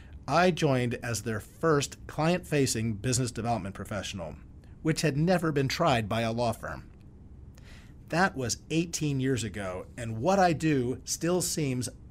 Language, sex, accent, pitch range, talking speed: English, male, American, 115-160 Hz, 145 wpm